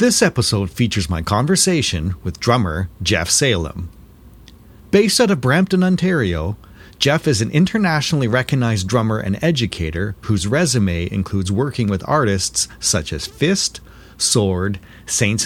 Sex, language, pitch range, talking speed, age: male, English, 95-140 Hz, 130 wpm, 40-59